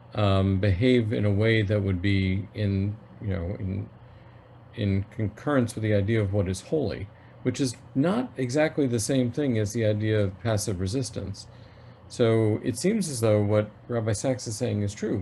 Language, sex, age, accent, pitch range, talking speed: English, male, 50-69, American, 105-125 Hz, 180 wpm